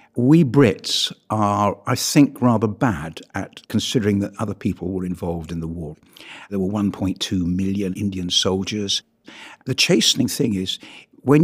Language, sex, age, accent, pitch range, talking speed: English, male, 60-79, British, 95-130 Hz, 145 wpm